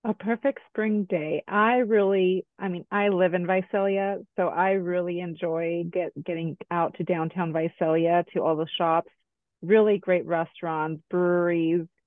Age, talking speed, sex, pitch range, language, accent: 30-49, 145 wpm, female, 170-195 Hz, English, American